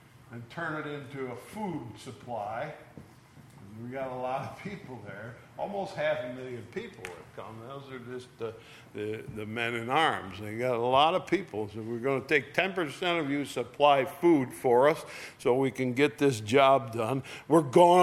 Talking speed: 185 wpm